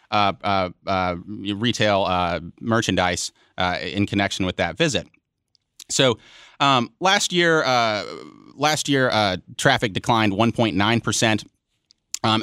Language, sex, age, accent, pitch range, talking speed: English, male, 30-49, American, 100-125 Hz, 115 wpm